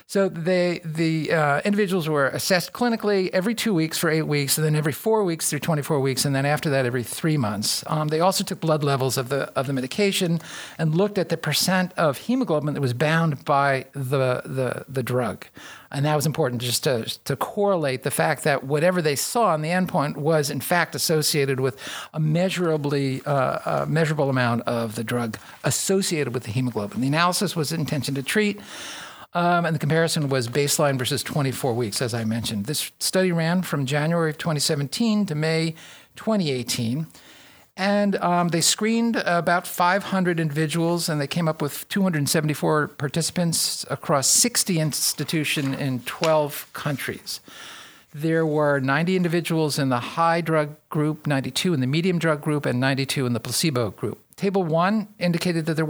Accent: American